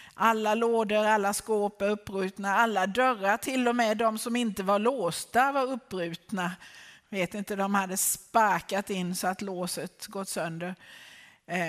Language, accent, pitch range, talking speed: Swedish, native, 195-240 Hz, 155 wpm